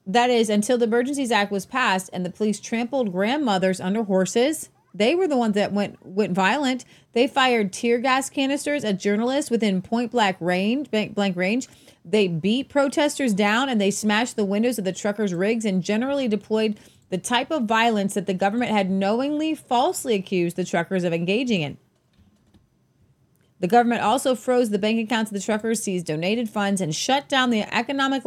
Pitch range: 185-240 Hz